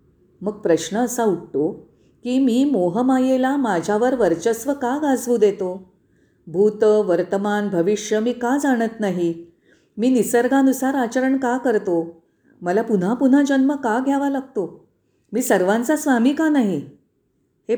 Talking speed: 125 wpm